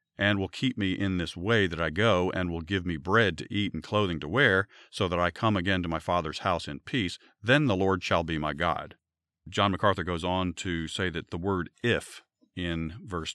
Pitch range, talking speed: 85-105 Hz, 230 wpm